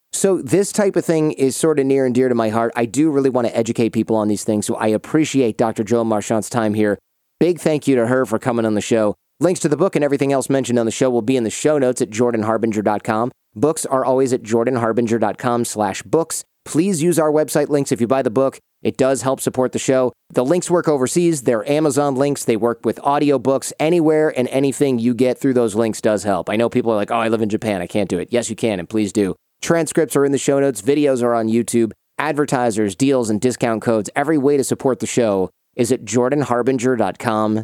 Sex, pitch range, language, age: male, 115-140 Hz, English, 30-49